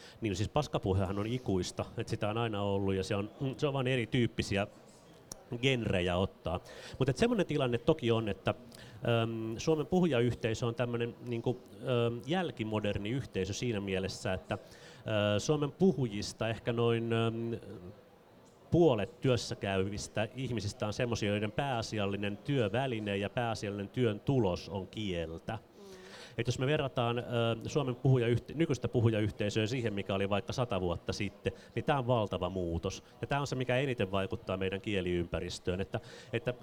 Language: Finnish